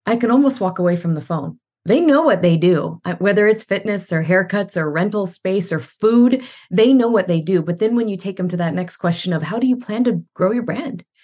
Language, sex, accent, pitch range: English, female, American, 175-230 Hz